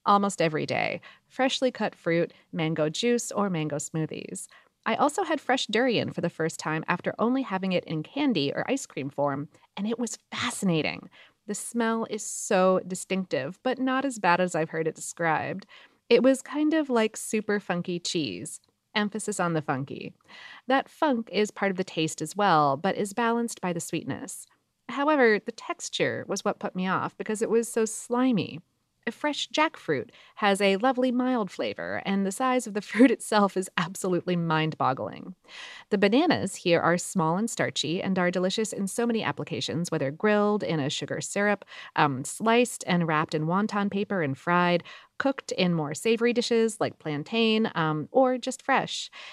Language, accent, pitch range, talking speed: English, American, 170-235 Hz, 180 wpm